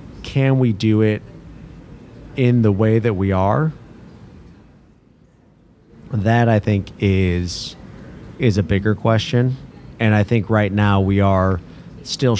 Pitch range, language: 95-115 Hz, English